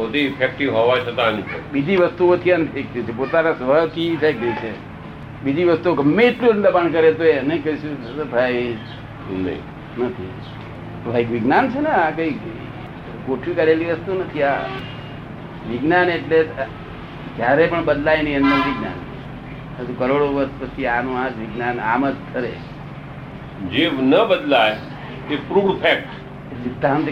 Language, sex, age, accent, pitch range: Gujarati, male, 60-79, native, 125-155 Hz